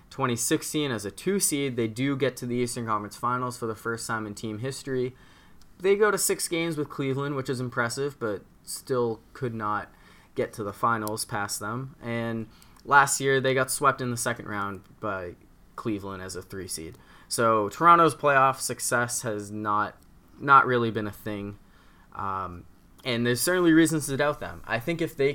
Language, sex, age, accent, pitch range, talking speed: English, male, 20-39, American, 110-135 Hz, 185 wpm